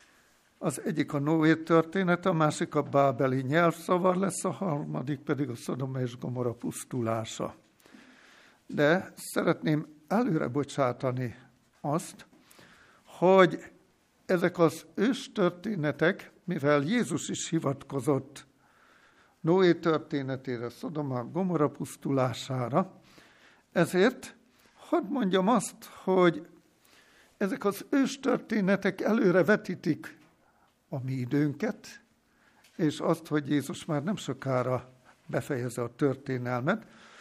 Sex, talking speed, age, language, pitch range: male, 95 wpm, 60-79, Hungarian, 135-205 Hz